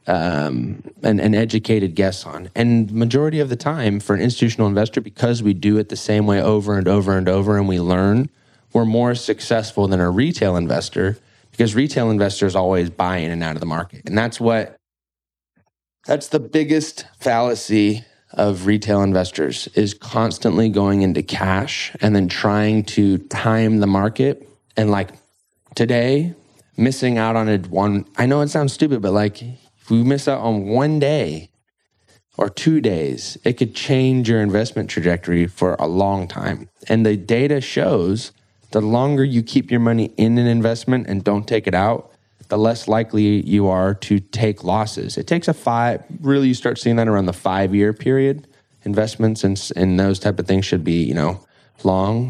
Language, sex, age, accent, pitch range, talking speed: English, male, 20-39, American, 95-120 Hz, 180 wpm